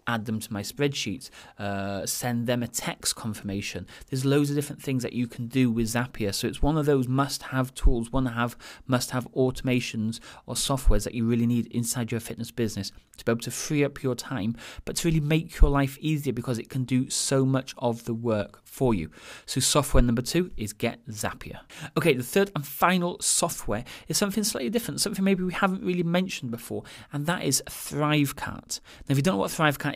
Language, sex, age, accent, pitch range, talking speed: English, male, 30-49, British, 120-145 Hz, 205 wpm